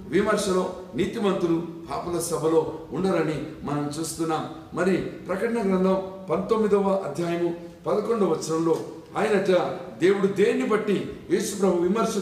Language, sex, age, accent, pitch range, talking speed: Telugu, male, 50-69, native, 165-195 Hz, 105 wpm